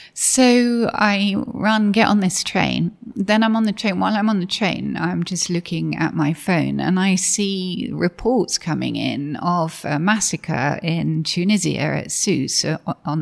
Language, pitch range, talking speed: English, 155-205 Hz, 170 wpm